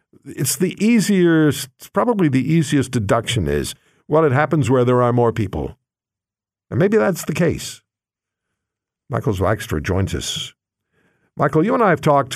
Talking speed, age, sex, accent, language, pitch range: 150 wpm, 60-79, male, American, English, 115-150 Hz